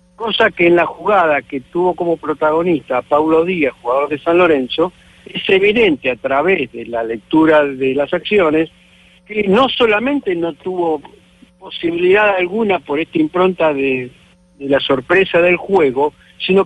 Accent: Argentinian